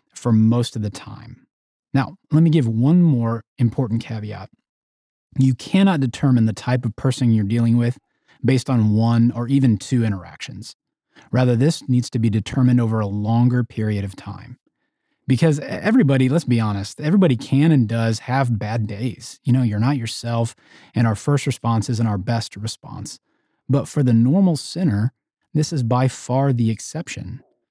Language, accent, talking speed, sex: English, American, 170 wpm, male